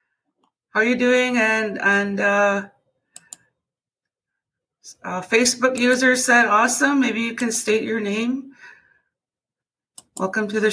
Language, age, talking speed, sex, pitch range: English, 30-49, 115 wpm, female, 180-225 Hz